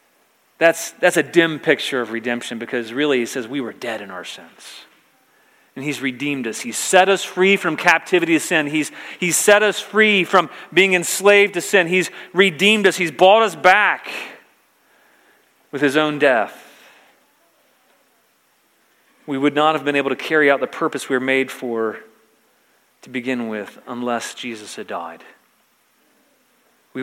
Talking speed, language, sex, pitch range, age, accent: 160 wpm, English, male, 135-175 Hz, 40-59, American